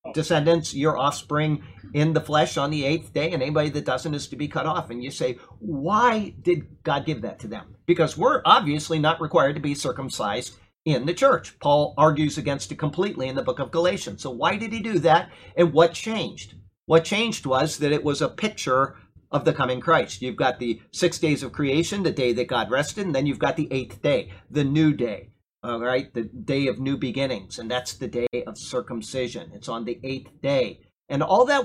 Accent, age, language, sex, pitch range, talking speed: American, 50-69, English, male, 130-170 Hz, 210 wpm